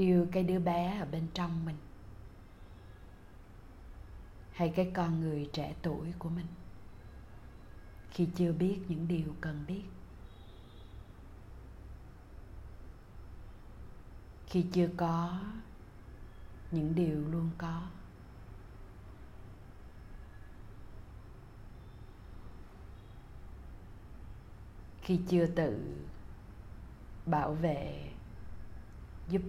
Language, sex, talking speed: Vietnamese, female, 75 wpm